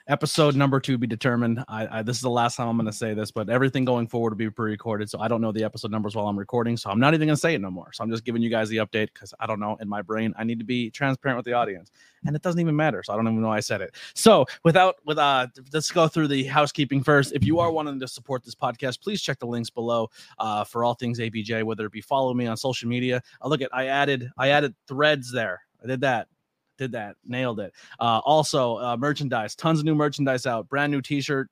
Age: 30-49